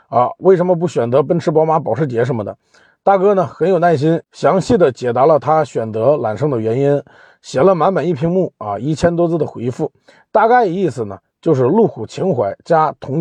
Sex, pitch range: male, 140-210 Hz